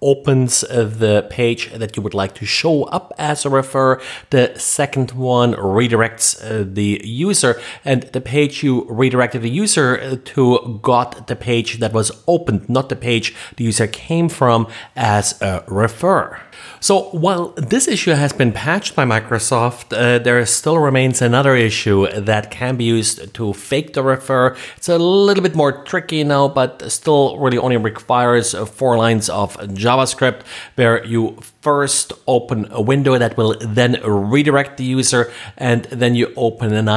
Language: English